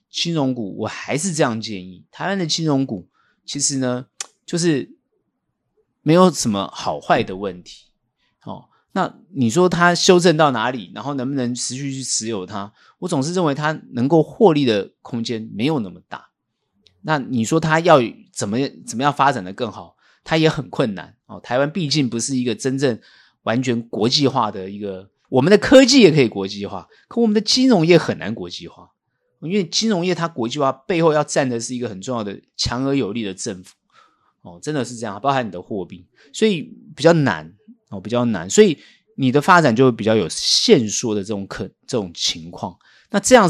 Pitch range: 110-160 Hz